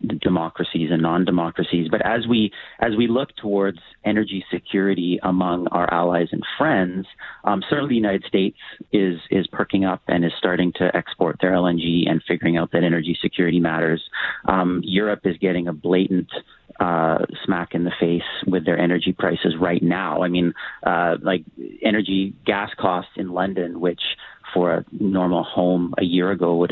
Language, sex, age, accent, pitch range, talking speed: English, male, 30-49, American, 85-105 Hz, 170 wpm